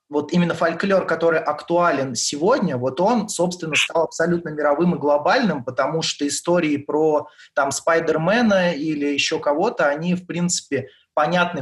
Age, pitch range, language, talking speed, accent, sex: 20-39, 145-180 Hz, Russian, 140 wpm, native, male